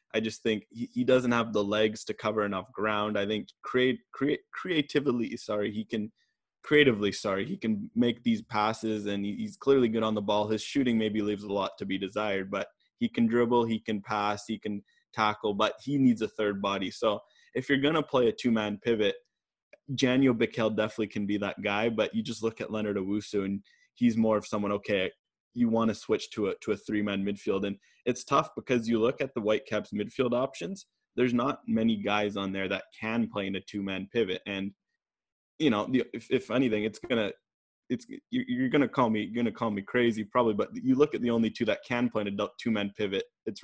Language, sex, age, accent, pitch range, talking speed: English, male, 20-39, American, 105-120 Hz, 220 wpm